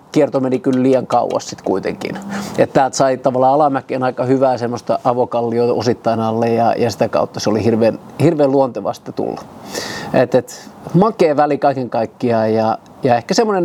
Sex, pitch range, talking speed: male, 115-135 Hz, 155 wpm